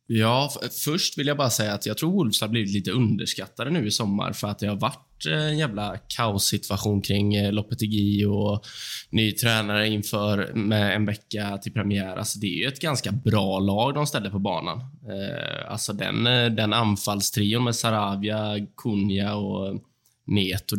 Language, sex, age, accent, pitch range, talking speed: Swedish, male, 20-39, native, 100-120 Hz, 165 wpm